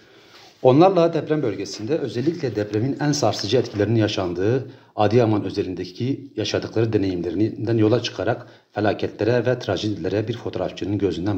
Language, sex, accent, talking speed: Turkish, male, native, 110 wpm